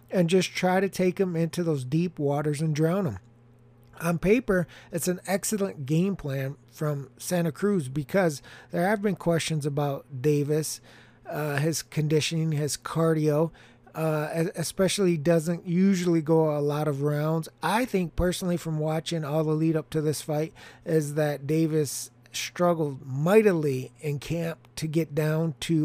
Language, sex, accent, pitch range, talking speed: English, male, American, 150-185 Hz, 155 wpm